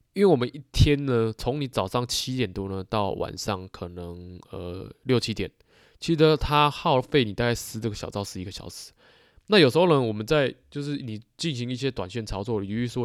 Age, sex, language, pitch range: 20-39, male, Chinese, 100-130 Hz